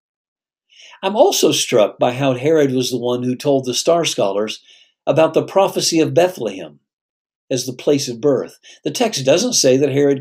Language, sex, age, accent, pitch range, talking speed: English, male, 60-79, American, 125-155 Hz, 175 wpm